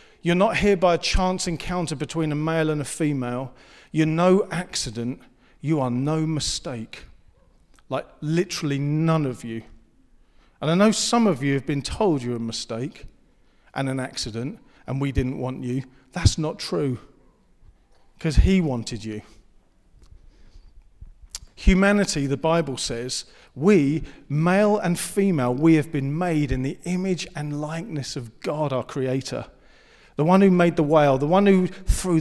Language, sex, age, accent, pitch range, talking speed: English, male, 40-59, British, 130-170 Hz, 155 wpm